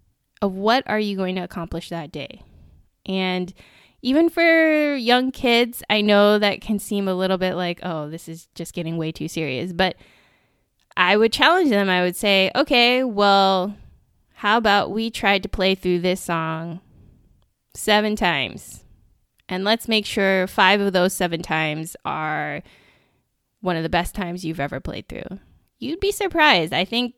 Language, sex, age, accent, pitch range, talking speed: English, female, 20-39, American, 170-215 Hz, 170 wpm